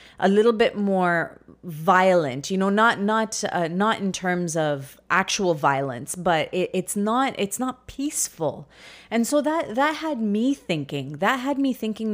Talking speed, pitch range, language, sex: 165 wpm, 165-225 Hz, English, female